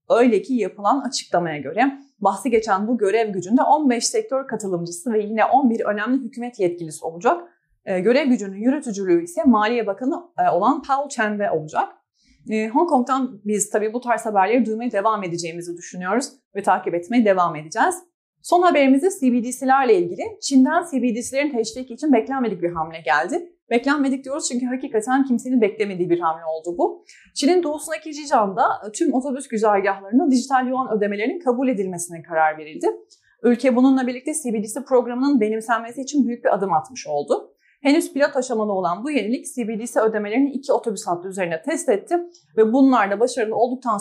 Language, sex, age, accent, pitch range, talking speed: Turkish, female, 30-49, native, 205-275 Hz, 150 wpm